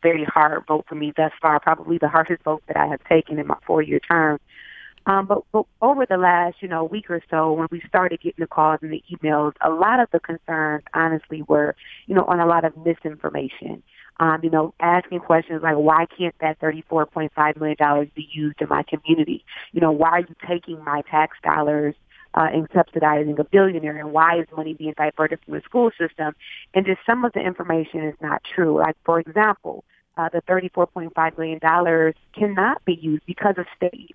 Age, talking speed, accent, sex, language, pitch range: 30-49, 205 wpm, American, female, English, 155-180 Hz